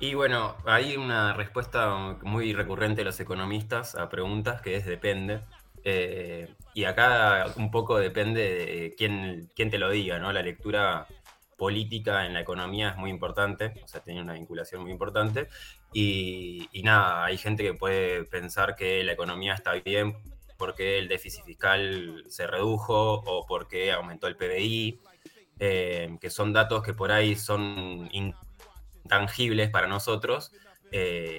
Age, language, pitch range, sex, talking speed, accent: 20-39, Spanish, 90-105 Hz, male, 155 wpm, Argentinian